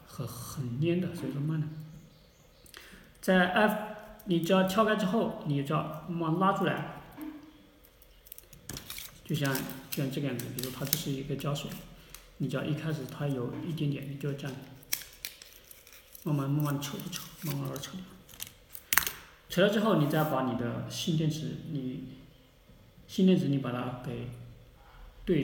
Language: Chinese